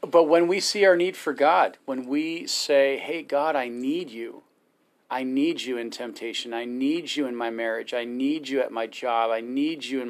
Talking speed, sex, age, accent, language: 220 wpm, male, 40-59, American, English